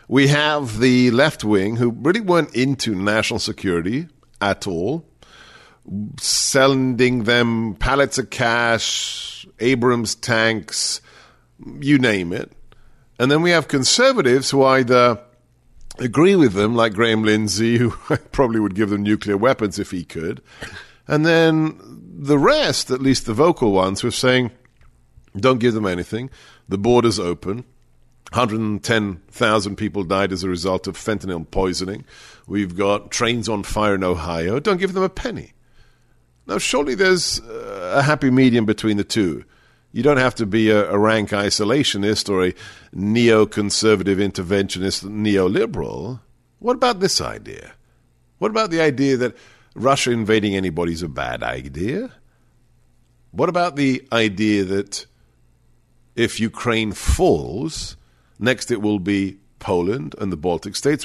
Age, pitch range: 50-69, 100-130 Hz